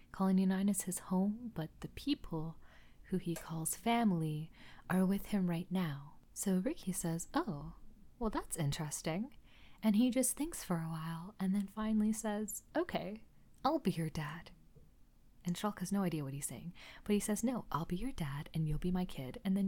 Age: 30-49